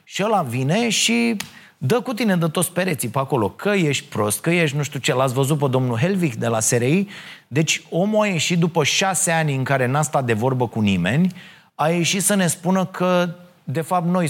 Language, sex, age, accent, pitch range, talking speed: Romanian, male, 30-49, native, 130-180 Hz, 220 wpm